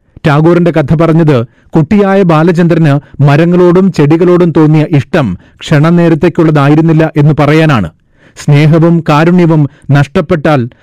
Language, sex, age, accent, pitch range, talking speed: Malayalam, male, 40-59, native, 140-170 Hz, 85 wpm